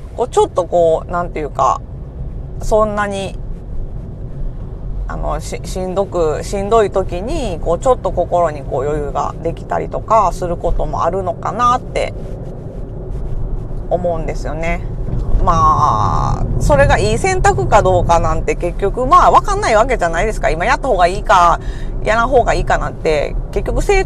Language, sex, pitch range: Japanese, female, 165-245 Hz